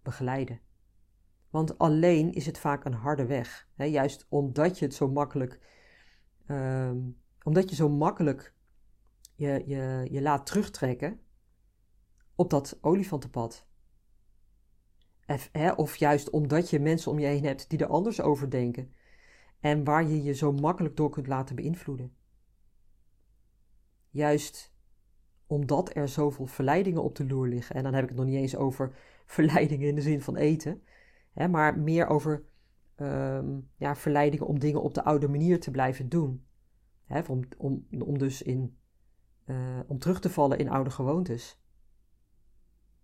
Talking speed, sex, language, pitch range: 145 wpm, female, Dutch, 120-150 Hz